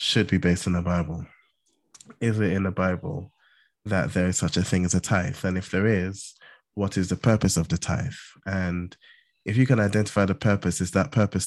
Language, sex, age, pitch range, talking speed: English, male, 20-39, 90-105 Hz, 215 wpm